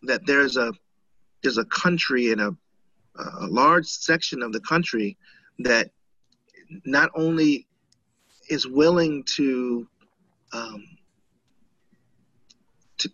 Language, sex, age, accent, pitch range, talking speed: English, male, 30-49, American, 110-165 Hz, 100 wpm